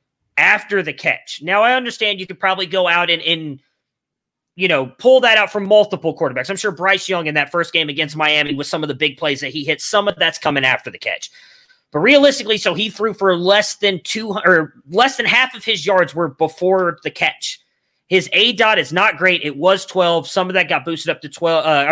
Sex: male